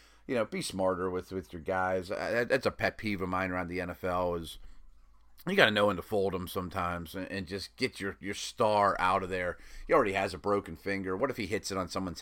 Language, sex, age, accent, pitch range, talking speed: English, male, 30-49, American, 90-120 Hz, 240 wpm